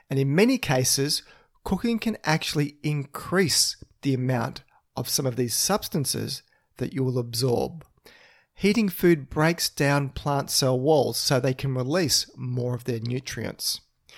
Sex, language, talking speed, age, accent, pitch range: male, English, 145 wpm, 40-59, Australian, 125-160 Hz